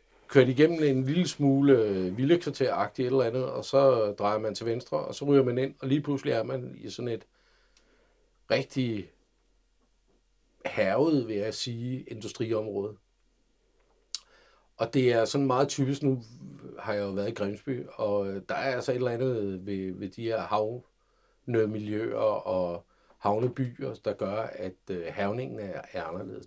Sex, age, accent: male, 50-69, native